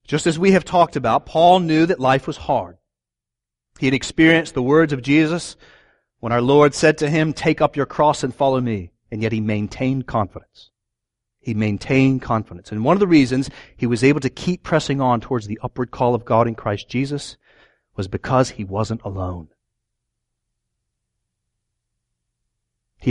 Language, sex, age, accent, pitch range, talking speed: English, male, 40-59, American, 115-155 Hz, 175 wpm